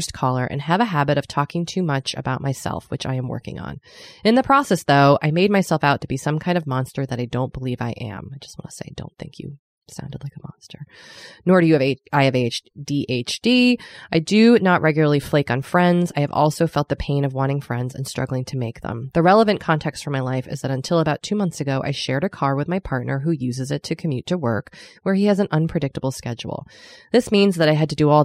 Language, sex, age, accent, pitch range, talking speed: English, female, 20-39, American, 135-175 Hz, 250 wpm